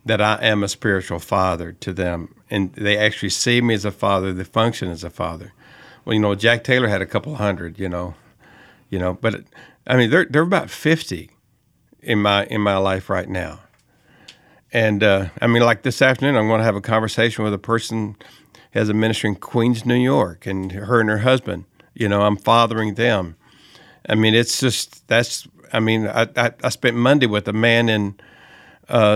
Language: English